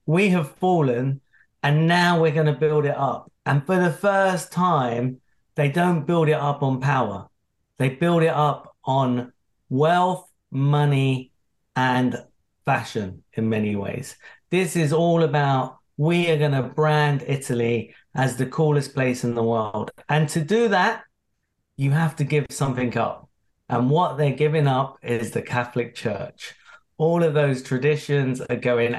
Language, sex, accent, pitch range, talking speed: English, male, British, 125-160 Hz, 160 wpm